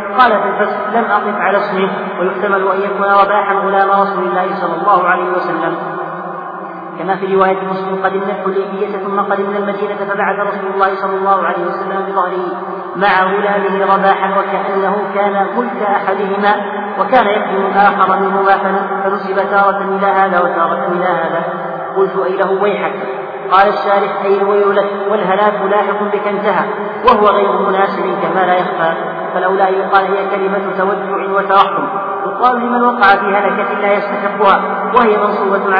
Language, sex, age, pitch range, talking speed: Arabic, male, 40-59, 195-200 Hz, 145 wpm